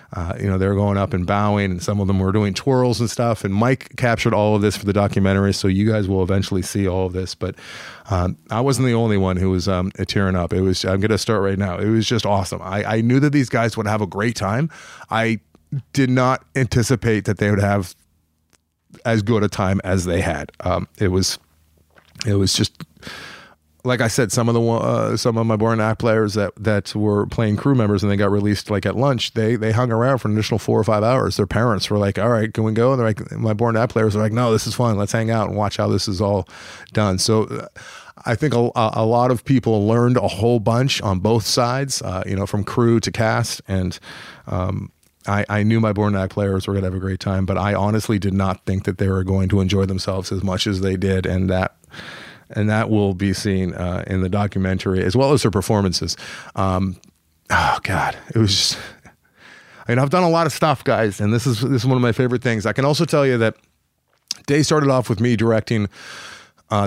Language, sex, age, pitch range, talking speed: English, male, 30-49, 95-115 Hz, 240 wpm